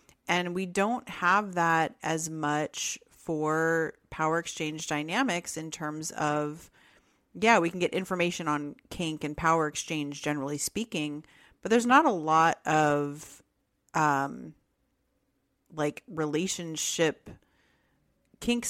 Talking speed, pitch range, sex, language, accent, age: 115 wpm, 150-190 Hz, female, English, American, 30-49